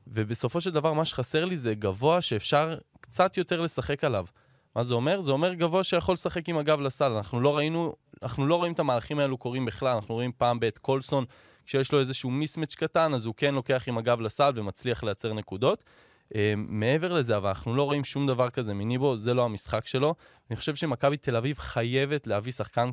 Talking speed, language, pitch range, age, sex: 200 wpm, Hebrew, 110-145 Hz, 20-39, male